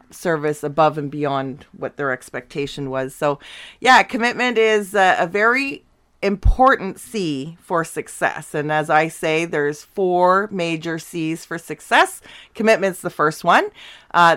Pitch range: 155-190 Hz